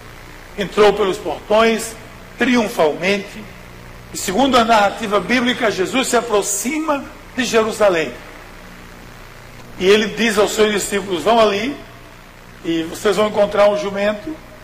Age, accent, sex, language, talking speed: 60-79, Brazilian, male, Portuguese, 115 wpm